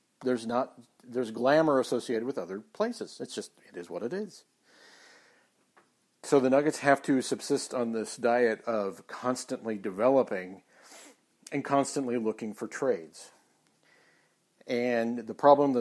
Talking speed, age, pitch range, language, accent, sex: 135 wpm, 50-69, 110-145 Hz, English, American, male